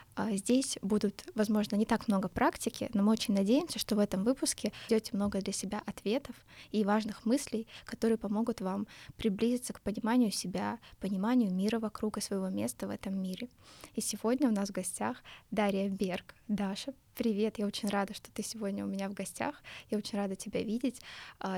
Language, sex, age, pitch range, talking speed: Russian, female, 20-39, 210-245 Hz, 180 wpm